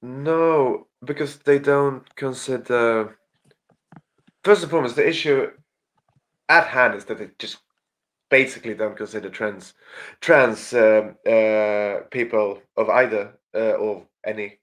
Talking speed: 120 wpm